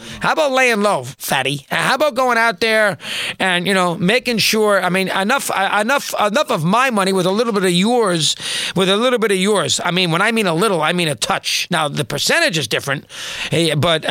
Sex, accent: male, American